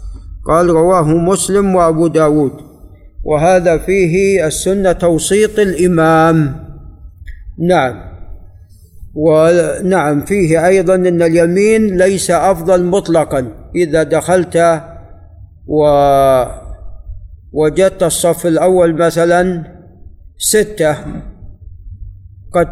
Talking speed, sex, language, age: 70 wpm, male, Arabic, 50-69